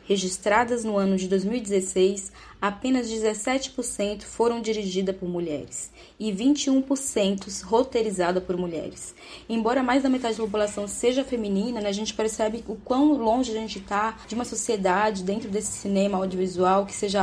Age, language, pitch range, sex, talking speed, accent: 10-29, Portuguese, 185-235 Hz, female, 150 wpm, Brazilian